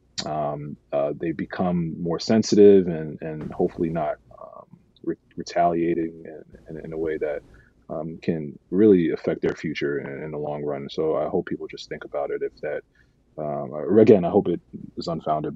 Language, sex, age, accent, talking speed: English, male, 30-49, American, 185 wpm